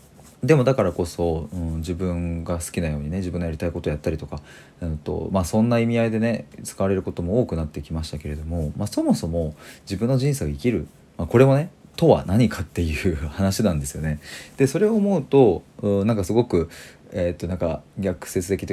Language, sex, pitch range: Japanese, male, 85-105 Hz